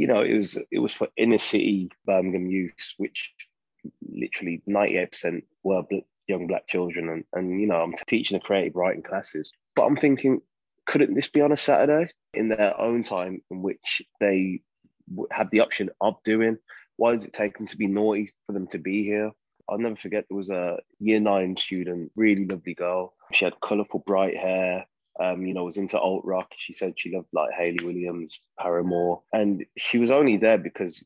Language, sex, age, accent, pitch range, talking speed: English, male, 20-39, British, 90-105 Hz, 200 wpm